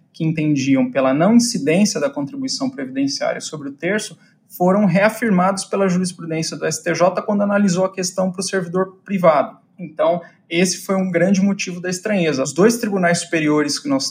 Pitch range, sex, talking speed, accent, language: 160-215 Hz, male, 165 wpm, Brazilian, Portuguese